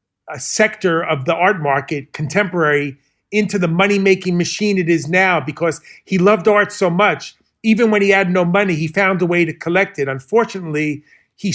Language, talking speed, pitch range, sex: English, 180 wpm, 150-195 Hz, male